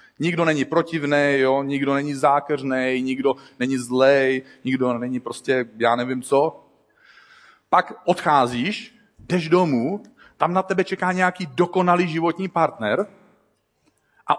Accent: native